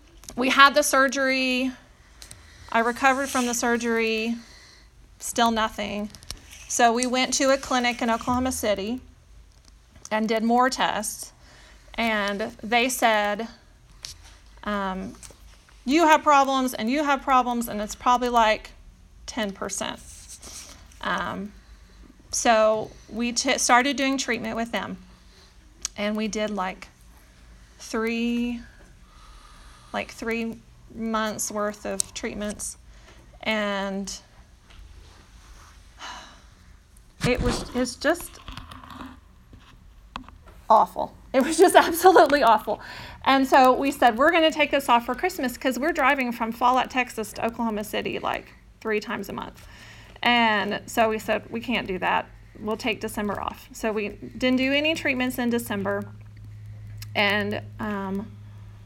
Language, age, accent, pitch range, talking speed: English, 30-49, American, 205-255 Hz, 120 wpm